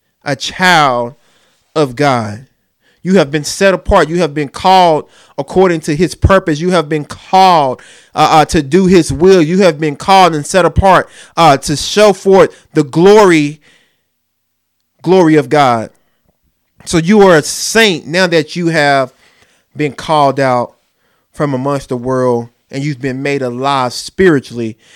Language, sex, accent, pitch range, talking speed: English, male, American, 125-155 Hz, 155 wpm